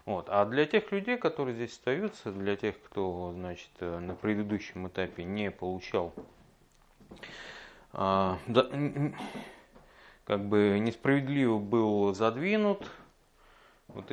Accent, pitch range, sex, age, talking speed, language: native, 90-130 Hz, male, 30-49, 90 wpm, Russian